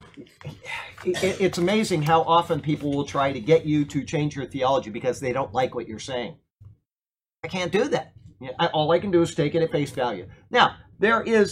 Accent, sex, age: American, male, 40-59